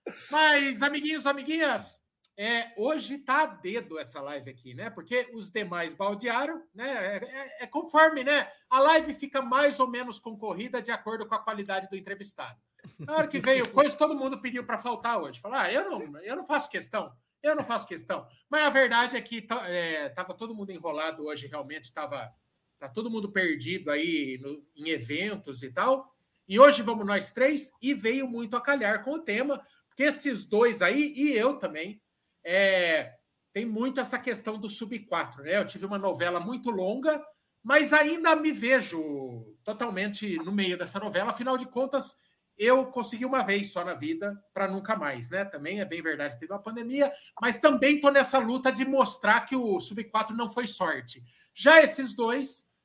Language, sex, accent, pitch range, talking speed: Portuguese, male, Brazilian, 195-275 Hz, 185 wpm